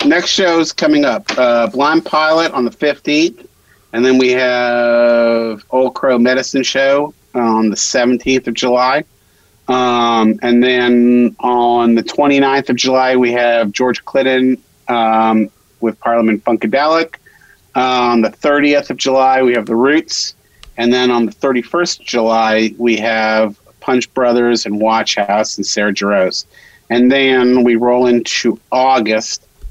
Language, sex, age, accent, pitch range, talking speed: English, male, 40-59, American, 115-135 Hz, 145 wpm